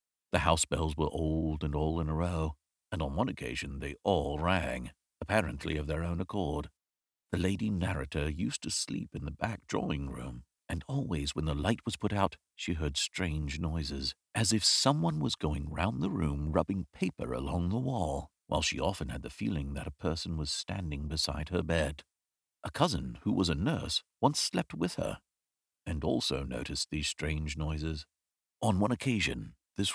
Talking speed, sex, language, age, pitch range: 185 wpm, male, English, 50-69, 75-105 Hz